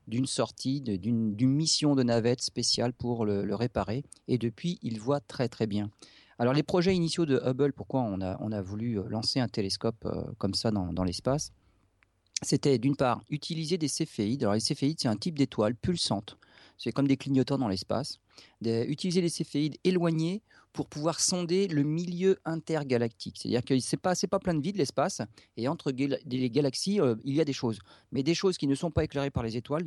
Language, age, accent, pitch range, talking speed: French, 40-59, French, 115-150 Hz, 205 wpm